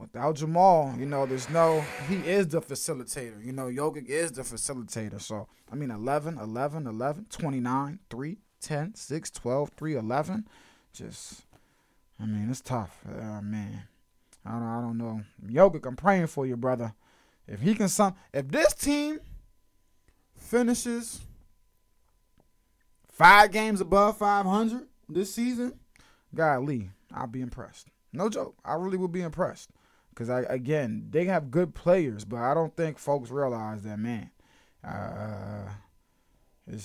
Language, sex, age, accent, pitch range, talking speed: English, male, 20-39, American, 115-165 Hz, 145 wpm